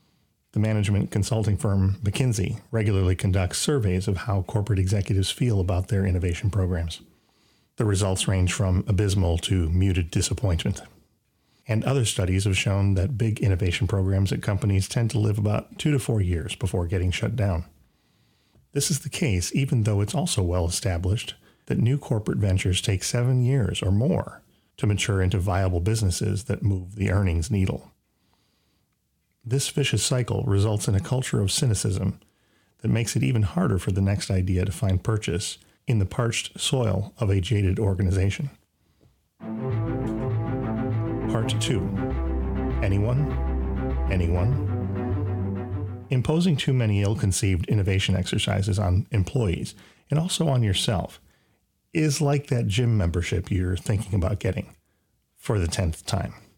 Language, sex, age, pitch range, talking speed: English, male, 40-59, 95-110 Hz, 145 wpm